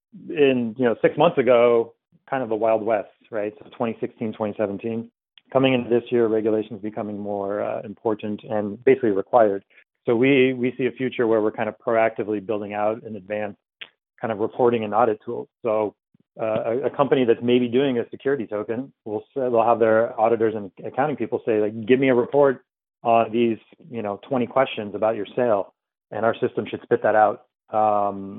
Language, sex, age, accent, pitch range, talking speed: English, male, 30-49, American, 105-120 Hz, 195 wpm